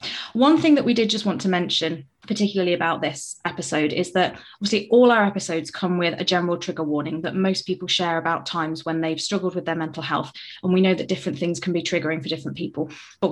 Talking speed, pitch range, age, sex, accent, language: 230 wpm, 155-185 Hz, 20-39, female, British, English